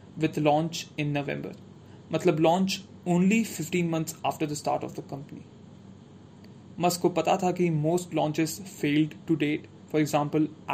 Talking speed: 150 wpm